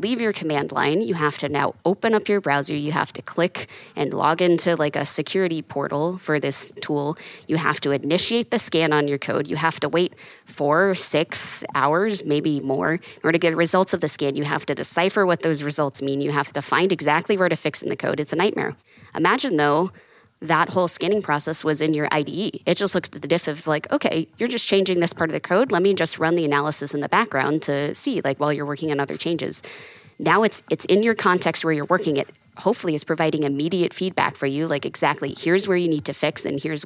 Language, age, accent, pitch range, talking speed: English, 20-39, American, 145-175 Hz, 240 wpm